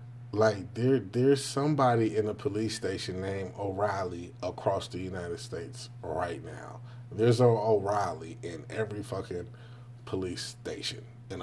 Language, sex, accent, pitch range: English, male, American, 100-120 Hz